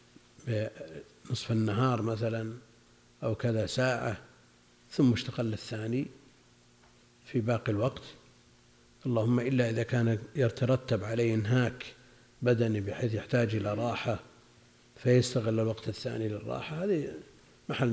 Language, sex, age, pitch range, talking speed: Arabic, male, 50-69, 105-125 Hz, 100 wpm